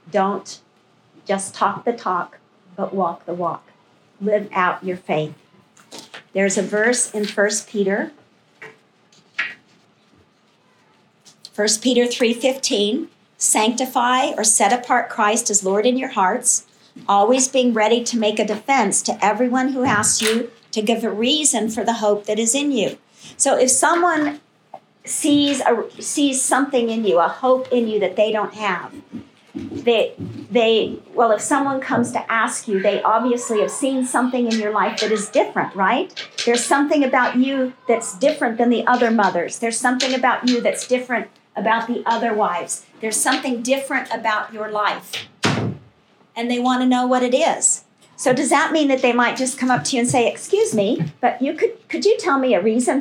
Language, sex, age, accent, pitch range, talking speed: English, female, 50-69, American, 210-260 Hz, 170 wpm